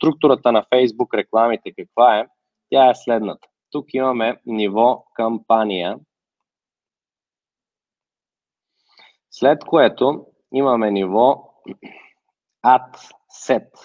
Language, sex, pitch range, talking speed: Bulgarian, male, 100-125 Hz, 80 wpm